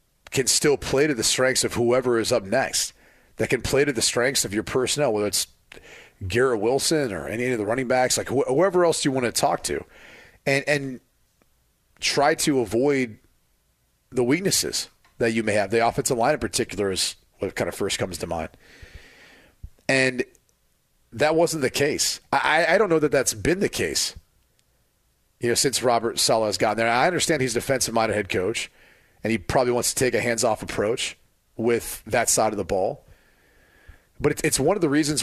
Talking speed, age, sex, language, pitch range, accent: 190 wpm, 40-59, male, English, 110-140 Hz, American